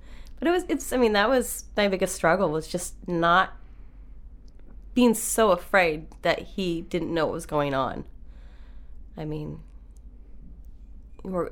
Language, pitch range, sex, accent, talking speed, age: English, 140-175 Hz, female, American, 145 wpm, 20-39